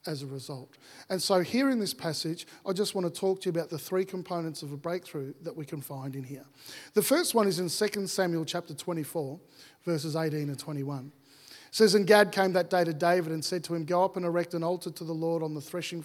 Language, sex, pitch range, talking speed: English, male, 155-185 Hz, 260 wpm